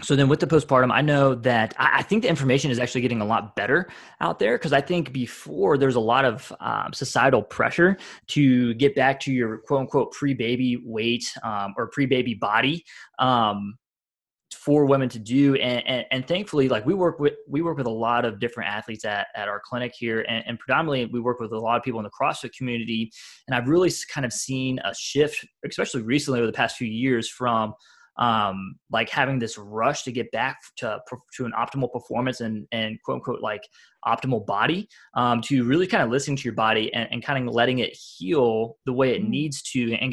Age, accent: 20-39, American